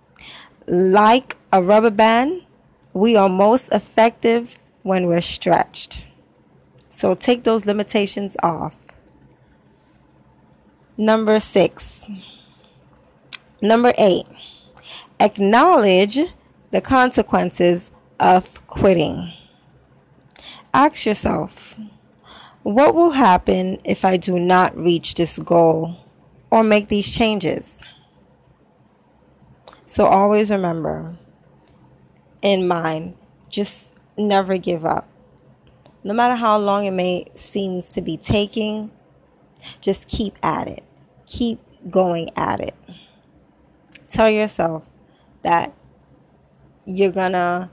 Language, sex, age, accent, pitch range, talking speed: English, female, 20-39, American, 175-215 Hz, 95 wpm